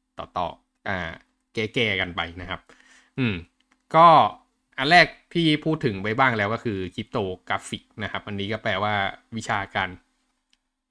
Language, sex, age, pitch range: Thai, male, 20-39, 105-145 Hz